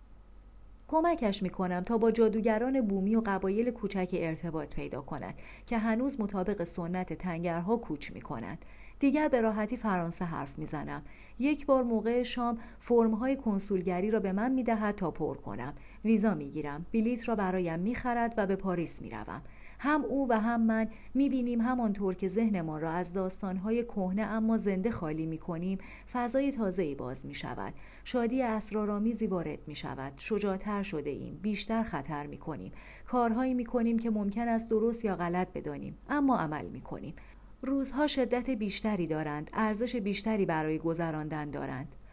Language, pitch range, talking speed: Persian, 175-235 Hz, 160 wpm